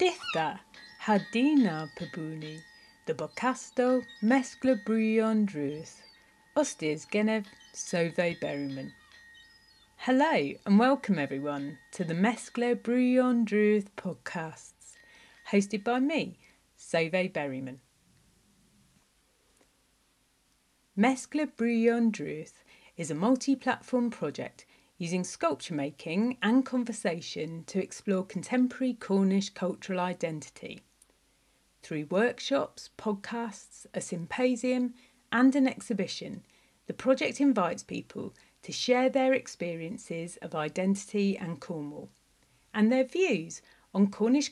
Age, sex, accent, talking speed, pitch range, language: 40-59, female, British, 90 wpm, 170-250 Hz, English